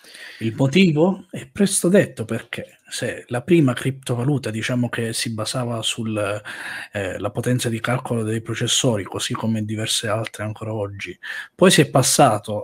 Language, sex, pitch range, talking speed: Italian, male, 110-135 Hz, 145 wpm